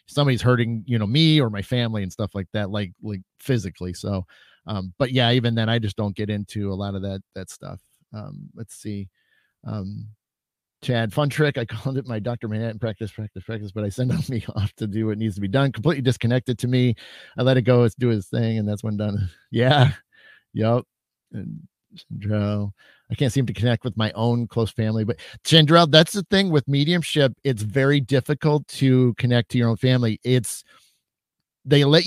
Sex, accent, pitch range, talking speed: male, American, 110-145 Hz, 205 wpm